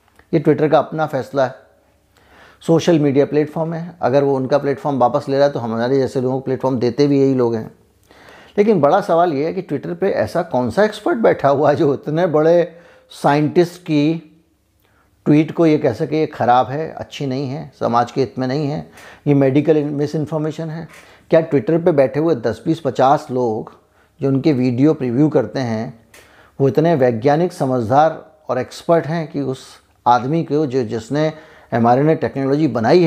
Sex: male